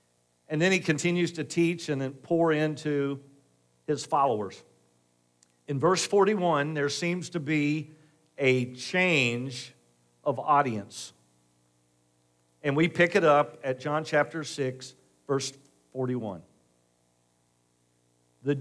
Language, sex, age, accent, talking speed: English, male, 50-69, American, 115 wpm